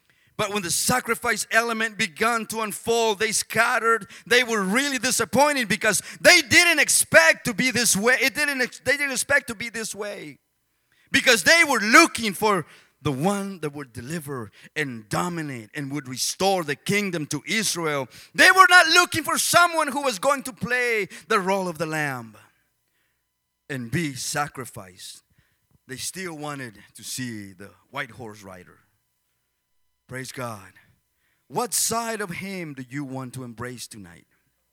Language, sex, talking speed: English, male, 155 wpm